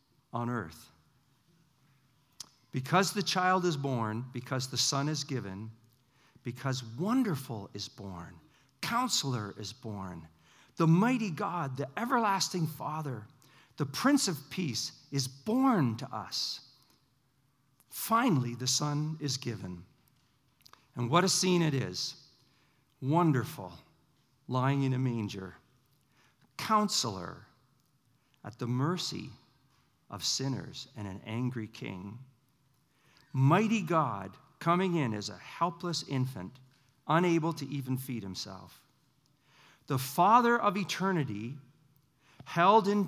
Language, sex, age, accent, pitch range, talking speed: English, male, 50-69, American, 125-160 Hz, 110 wpm